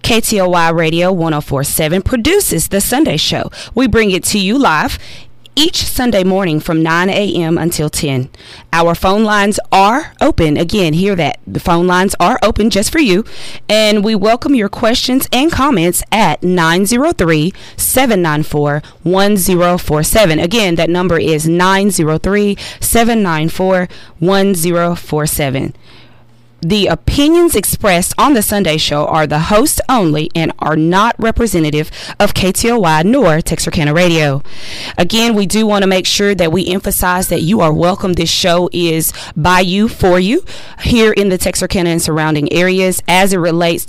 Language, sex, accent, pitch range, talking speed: English, female, American, 165-205 Hz, 140 wpm